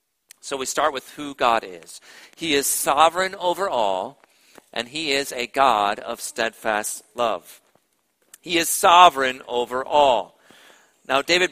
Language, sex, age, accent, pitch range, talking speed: English, male, 50-69, American, 125-165 Hz, 140 wpm